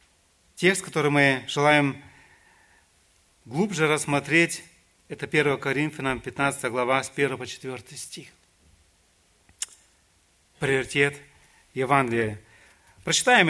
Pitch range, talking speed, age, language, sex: 130-180 Hz, 85 wpm, 40-59, Russian, male